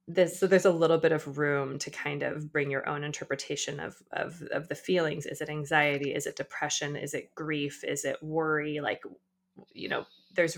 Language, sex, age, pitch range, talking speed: English, female, 20-39, 145-185 Hz, 205 wpm